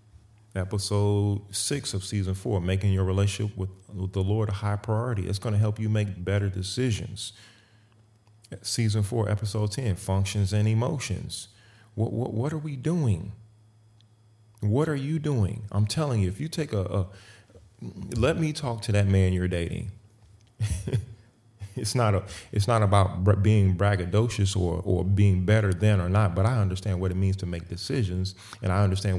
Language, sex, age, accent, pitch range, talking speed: English, male, 30-49, American, 95-110 Hz, 170 wpm